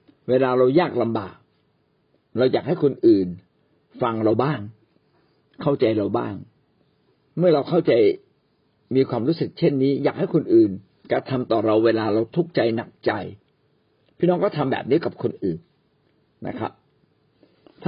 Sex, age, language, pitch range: male, 60-79, Thai, 110-160 Hz